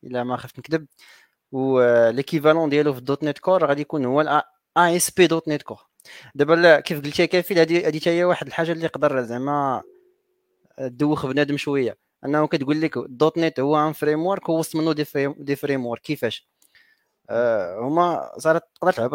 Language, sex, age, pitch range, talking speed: Arabic, male, 30-49, 140-170 Hz, 170 wpm